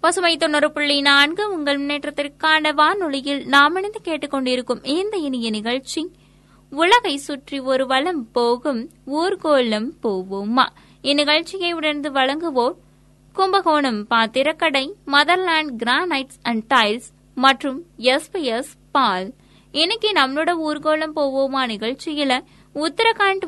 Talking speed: 100 wpm